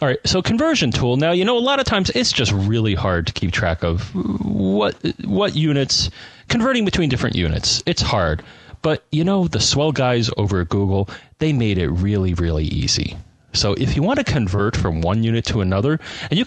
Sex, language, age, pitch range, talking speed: male, English, 30-49, 95-135 Hz, 210 wpm